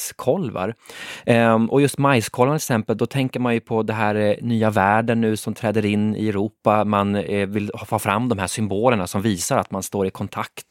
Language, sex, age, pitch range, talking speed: Swedish, male, 20-39, 100-120 Hz, 195 wpm